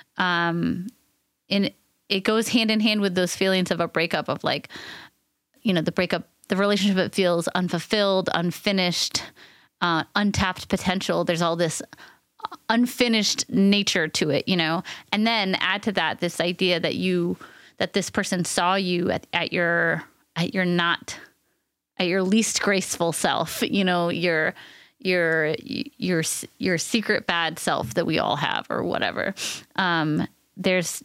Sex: female